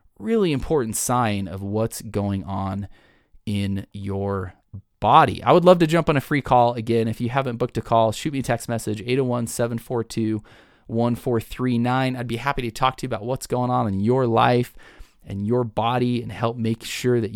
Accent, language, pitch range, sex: American, English, 105-130 Hz, male